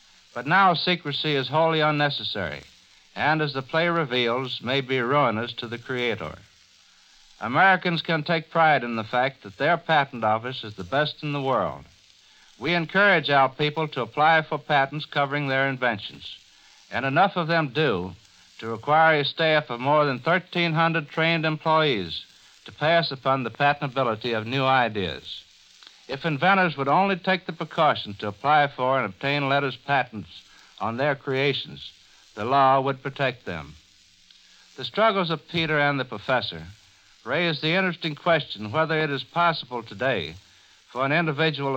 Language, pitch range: English, 120-160 Hz